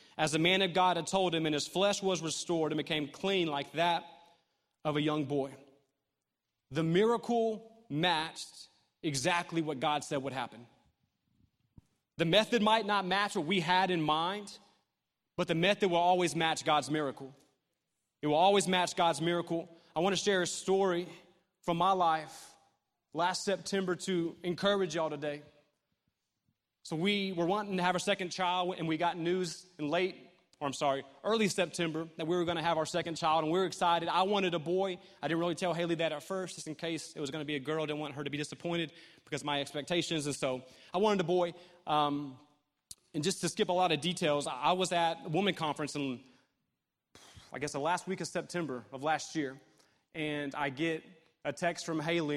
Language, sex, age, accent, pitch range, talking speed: English, male, 30-49, American, 150-180 Hz, 200 wpm